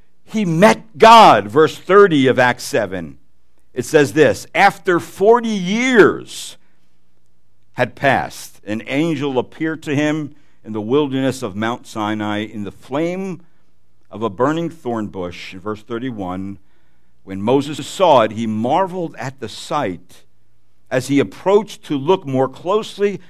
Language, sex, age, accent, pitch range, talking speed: English, male, 60-79, American, 110-155 Hz, 135 wpm